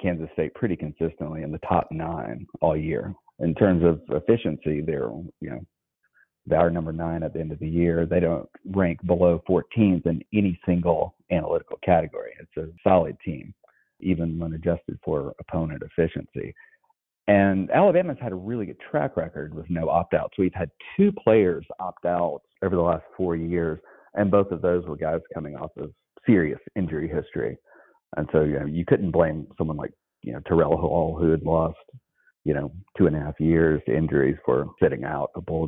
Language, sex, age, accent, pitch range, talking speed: English, male, 40-59, American, 80-95 Hz, 185 wpm